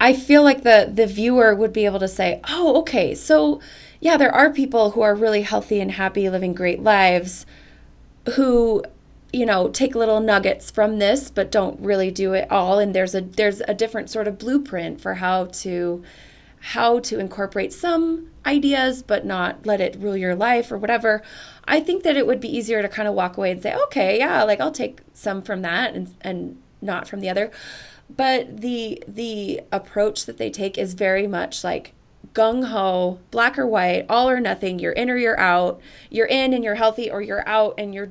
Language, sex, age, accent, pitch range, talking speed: English, female, 20-39, American, 190-250 Hz, 200 wpm